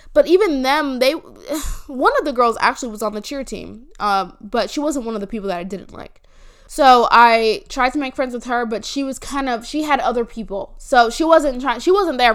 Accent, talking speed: American, 245 wpm